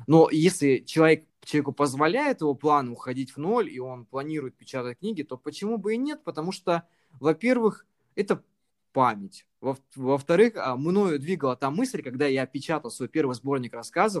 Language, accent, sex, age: Russian, native, male, 20-39